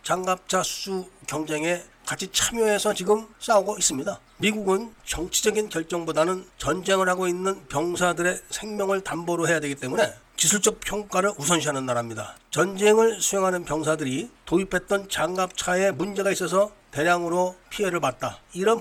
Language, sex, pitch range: Korean, male, 150-190 Hz